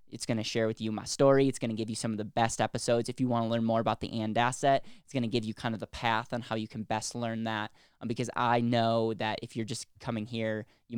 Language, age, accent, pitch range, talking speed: English, 10-29, American, 110-130 Hz, 295 wpm